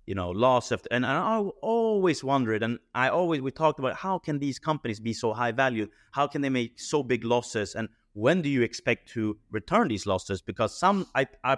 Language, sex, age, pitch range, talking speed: English, male, 30-49, 100-135 Hz, 220 wpm